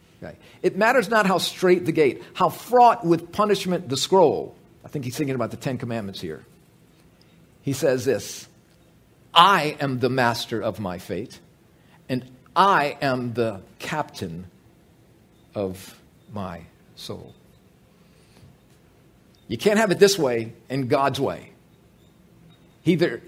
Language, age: English, 50-69